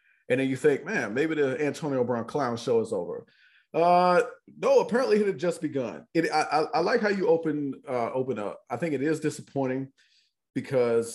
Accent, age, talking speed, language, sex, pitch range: American, 40-59, 195 wpm, English, male, 125-175 Hz